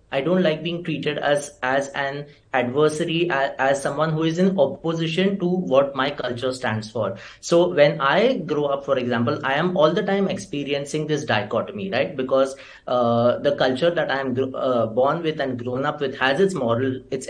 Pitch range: 130-180 Hz